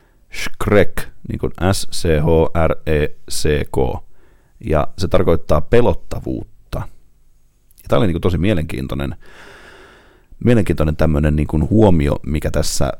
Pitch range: 75-95 Hz